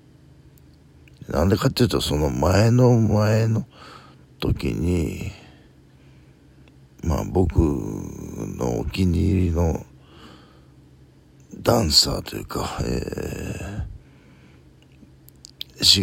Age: 60-79